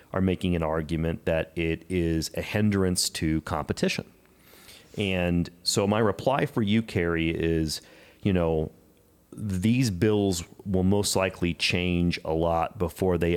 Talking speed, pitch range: 140 wpm, 80-95 Hz